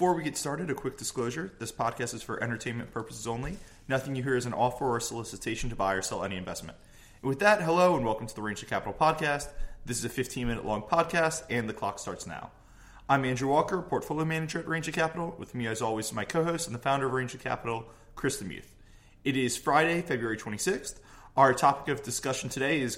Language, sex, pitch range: English, male, 115-145 Hz